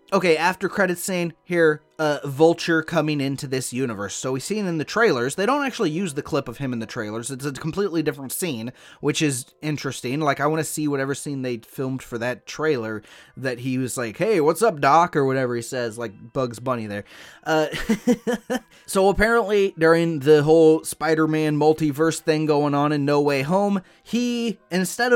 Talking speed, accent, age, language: 195 wpm, American, 20-39, English